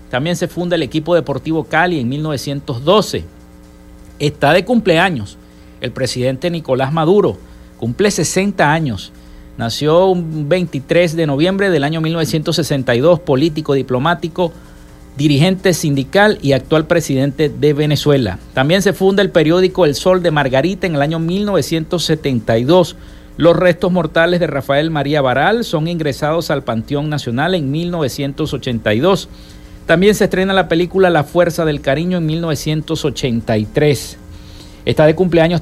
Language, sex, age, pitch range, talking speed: Spanish, male, 50-69, 130-170 Hz, 130 wpm